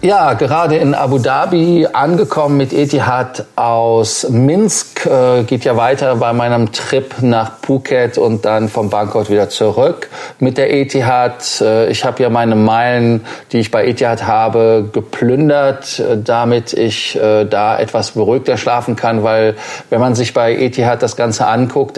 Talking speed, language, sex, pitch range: 155 wpm, German, male, 115-135 Hz